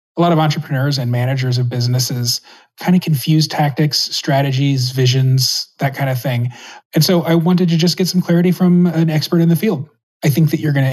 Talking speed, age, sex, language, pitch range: 215 wpm, 30-49, male, English, 135-165 Hz